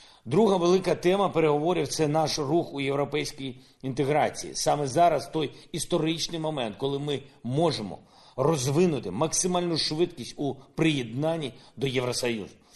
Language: Ukrainian